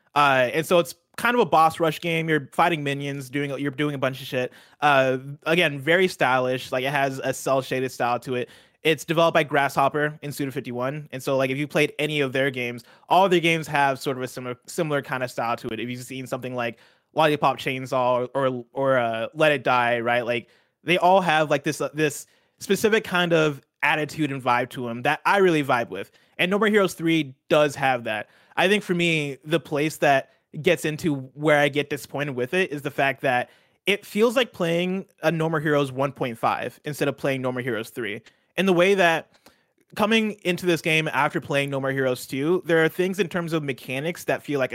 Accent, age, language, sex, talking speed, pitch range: American, 20-39, English, male, 220 wpm, 130-170 Hz